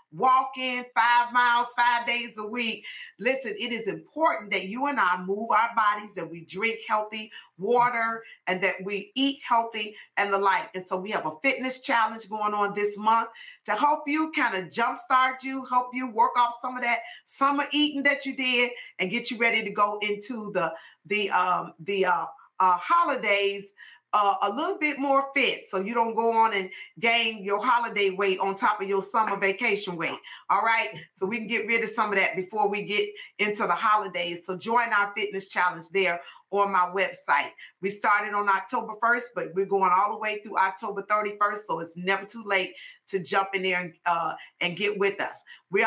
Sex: female